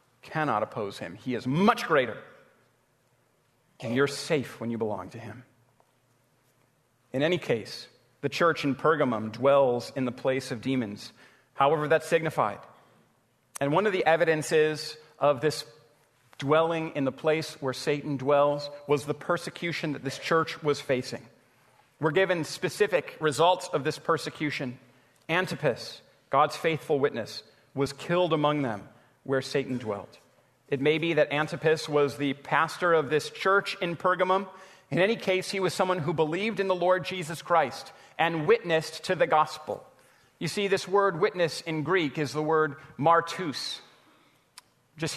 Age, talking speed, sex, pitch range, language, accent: 40-59, 150 wpm, male, 140-180 Hz, English, American